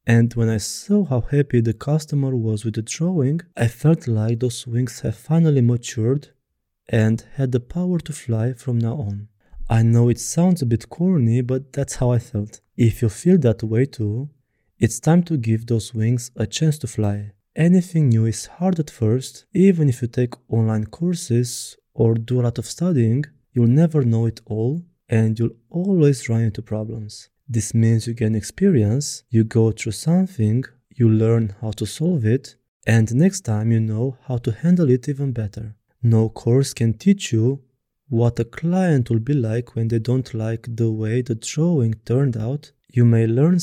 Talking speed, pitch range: 185 wpm, 115-145 Hz